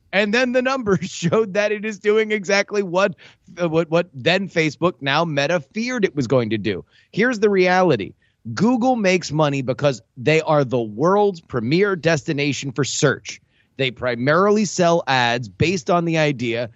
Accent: American